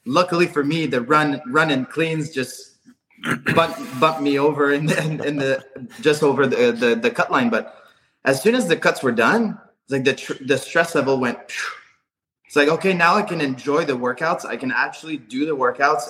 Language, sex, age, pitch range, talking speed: English, male, 20-39, 130-175 Hz, 215 wpm